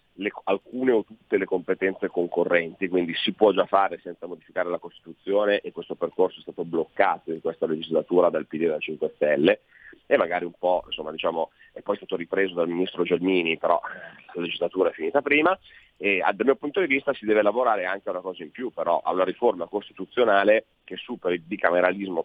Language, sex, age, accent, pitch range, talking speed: Italian, male, 30-49, native, 90-125 Hz, 195 wpm